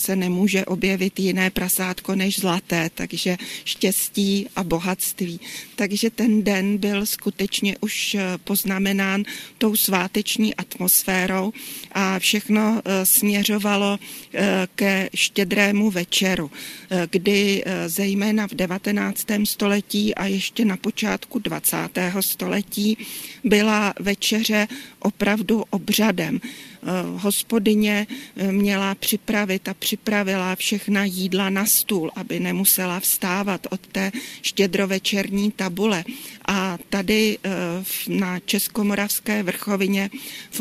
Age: 40-59